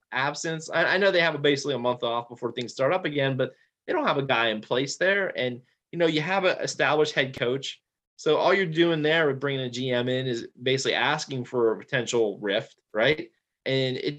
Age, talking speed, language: 20-39, 225 wpm, English